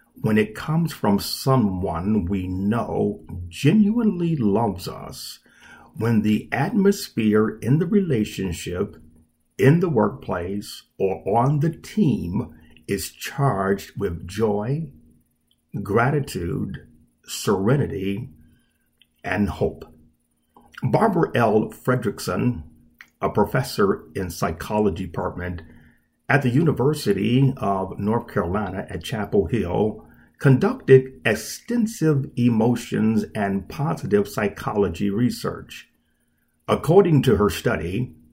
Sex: male